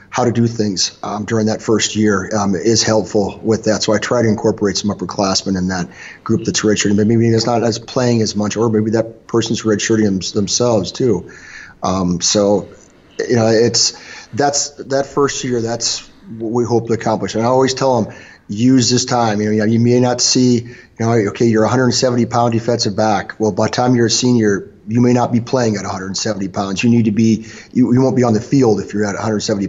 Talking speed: 220 wpm